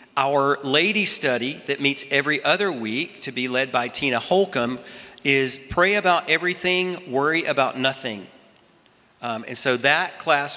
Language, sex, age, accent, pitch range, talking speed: English, male, 40-59, American, 130-170 Hz, 150 wpm